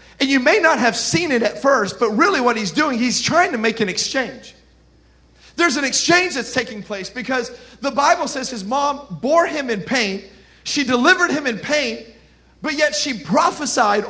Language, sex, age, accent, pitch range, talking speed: English, male, 40-59, American, 235-295 Hz, 190 wpm